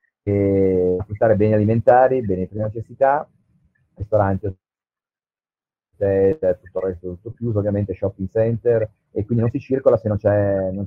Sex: male